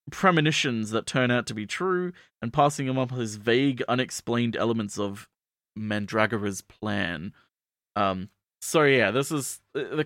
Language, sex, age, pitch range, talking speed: English, male, 30-49, 105-140 Hz, 145 wpm